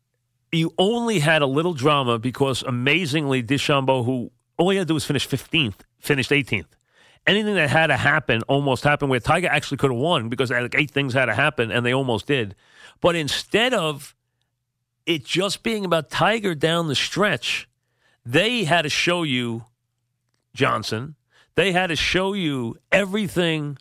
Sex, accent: male, American